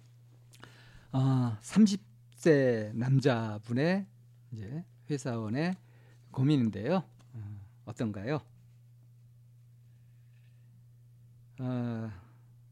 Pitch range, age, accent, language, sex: 120-135 Hz, 40-59, native, Korean, male